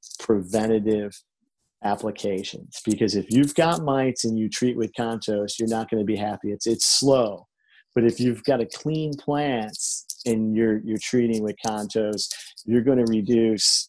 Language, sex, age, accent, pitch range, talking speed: English, male, 40-59, American, 105-120 Hz, 165 wpm